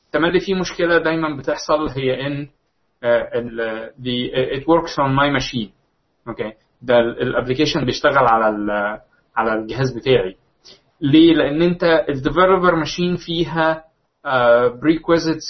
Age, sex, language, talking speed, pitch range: 20-39, male, Arabic, 120 wpm, 125-160 Hz